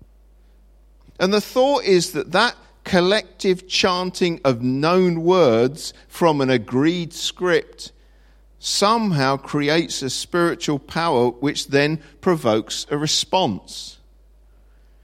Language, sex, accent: English, male, British